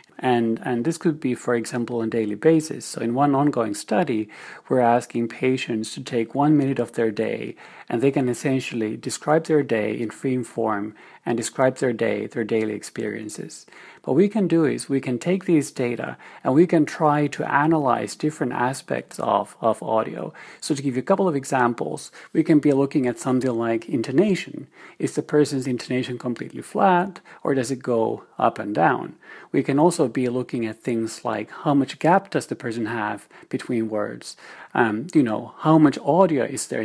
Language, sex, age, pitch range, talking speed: English, male, 40-59, 120-155 Hz, 190 wpm